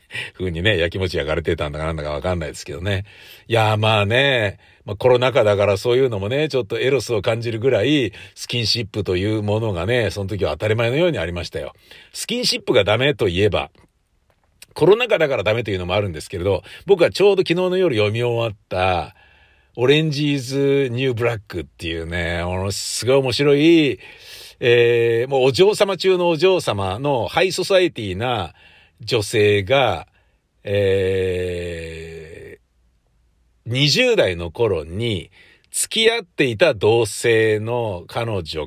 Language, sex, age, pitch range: Japanese, male, 50-69, 95-155 Hz